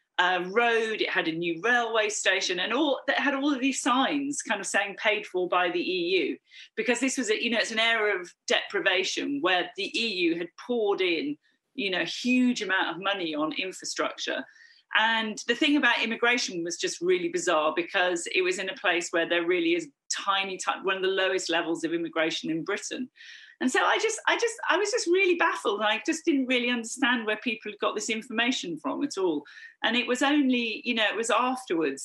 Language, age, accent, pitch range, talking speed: Greek, 40-59, British, 185-310 Hz, 210 wpm